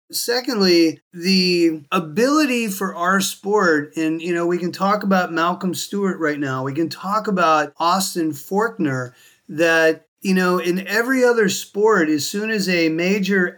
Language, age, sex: English, 30-49, male